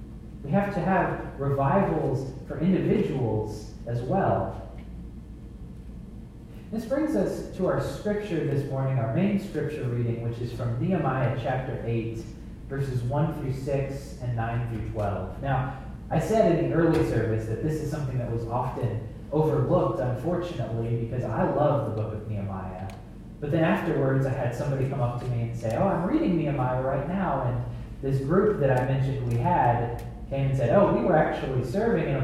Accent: American